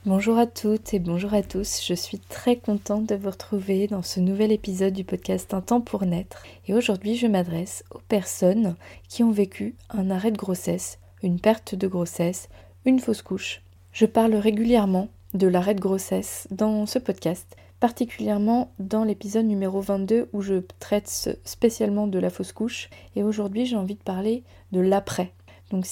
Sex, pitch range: female, 190-220 Hz